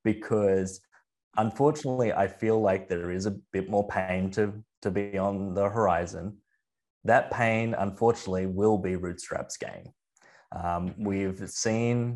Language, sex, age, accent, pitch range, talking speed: English, male, 20-39, Australian, 95-110 Hz, 135 wpm